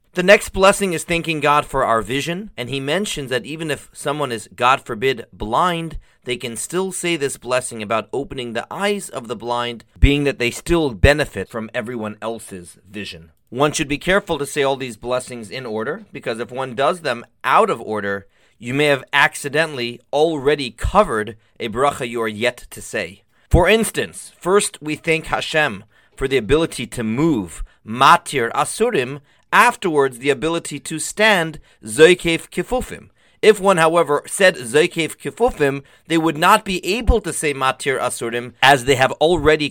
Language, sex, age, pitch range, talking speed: English, male, 30-49, 120-160 Hz, 170 wpm